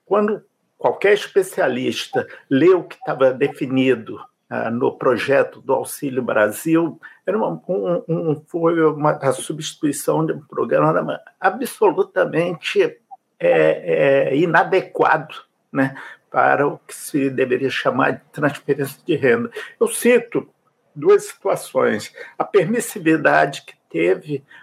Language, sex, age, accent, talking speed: Portuguese, male, 50-69, Brazilian, 115 wpm